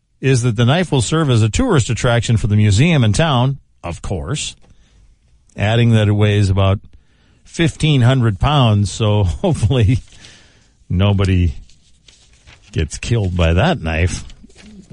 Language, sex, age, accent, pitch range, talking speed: English, male, 50-69, American, 100-130 Hz, 135 wpm